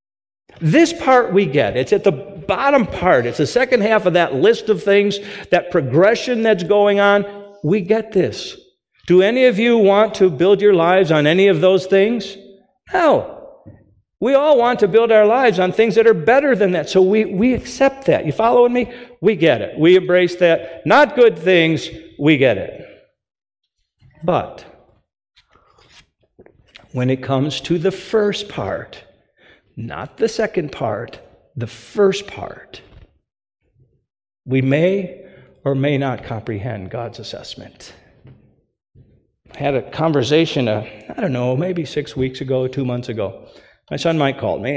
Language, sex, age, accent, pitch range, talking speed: English, male, 50-69, American, 145-215 Hz, 160 wpm